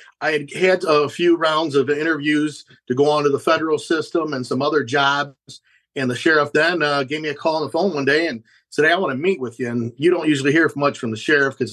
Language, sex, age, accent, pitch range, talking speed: English, male, 50-69, American, 125-155 Hz, 265 wpm